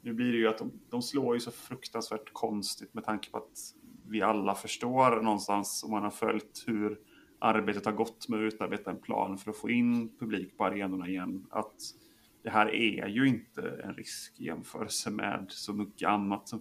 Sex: male